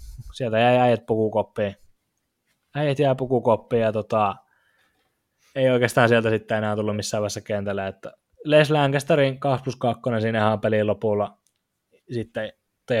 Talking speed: 140 wpm